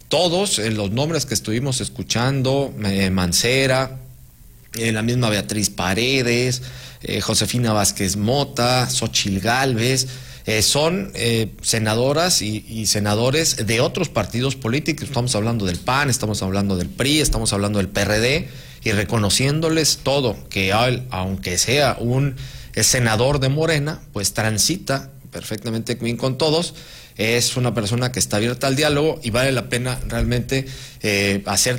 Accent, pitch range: Mexican, 105-130 Hz